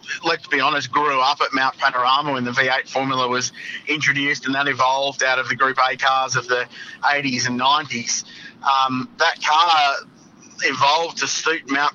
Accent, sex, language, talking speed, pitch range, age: Australian, male, English, 175 wpm, 130-160 Hz, 30-49